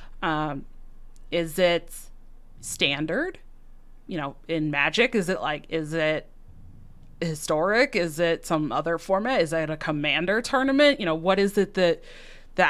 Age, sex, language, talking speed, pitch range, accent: 30-49, female, English, 145 wpm, 160-195 Hz, American